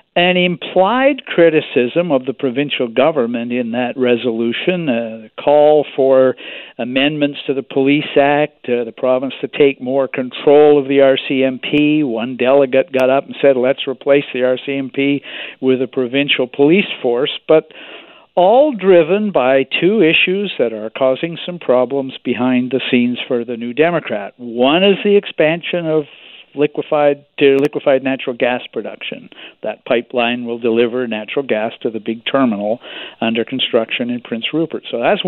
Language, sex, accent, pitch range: English, male, American, 125-155 Hz